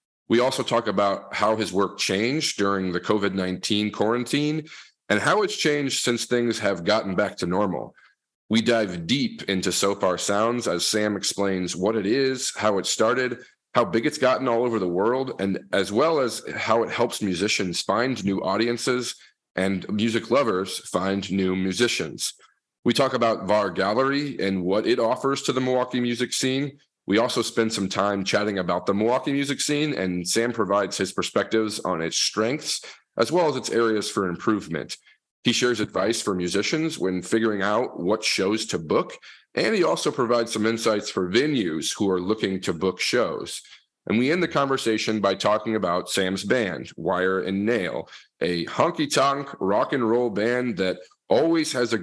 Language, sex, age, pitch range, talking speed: English, male, 40-59, 95-125 Hz, 175 wpm